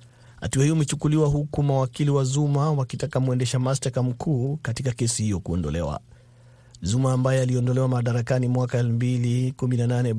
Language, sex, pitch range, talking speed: Swahili, male, 120-135 Hz, 130 wpm